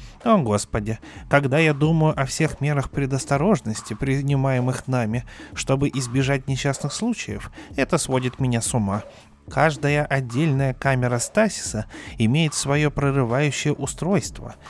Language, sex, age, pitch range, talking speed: Russian, male, 20-39, 115-150 Hz, 115 wpm